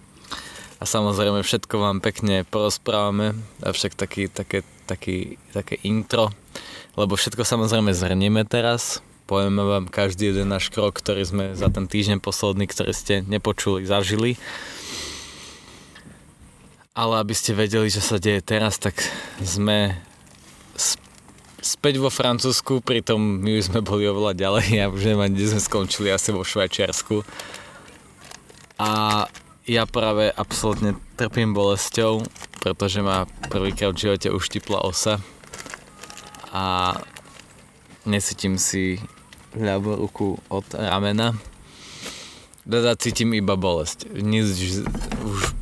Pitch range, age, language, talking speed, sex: 100-110 Hz, 20-39, Slovak, 120 wpm, male